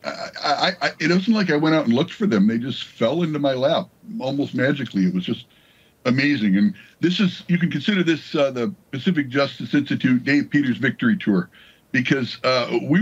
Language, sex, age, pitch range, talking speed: English, male, 60-79, 120-185 Hz, 190 wpm